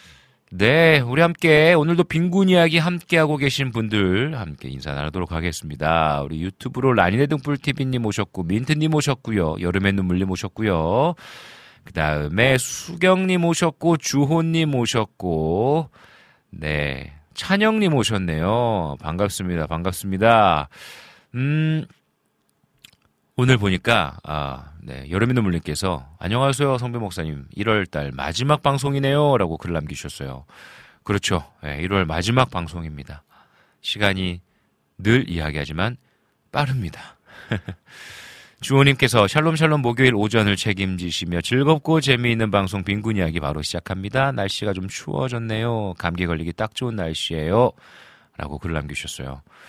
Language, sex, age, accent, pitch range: Korean, male, 40-59, native, 85-135 Hz